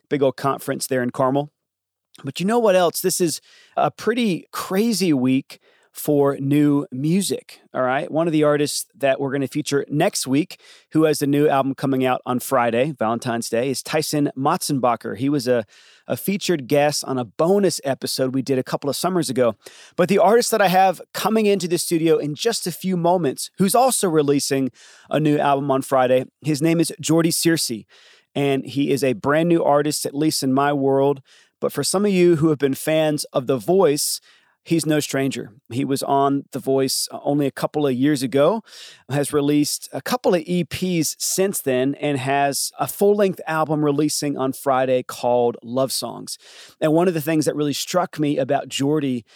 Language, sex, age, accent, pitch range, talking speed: English, male, 30-49, American, 135-165 Hz, 195 wpm